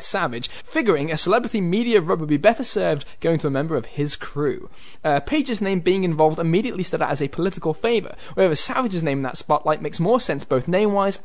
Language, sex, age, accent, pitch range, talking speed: English, male, 10-29, British, 145-220 Hz, 215 wpm